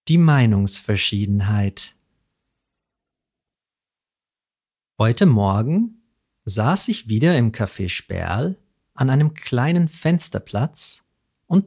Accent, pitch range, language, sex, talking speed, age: German, 105-160 Hz, English, male, 75 wpm, 50-69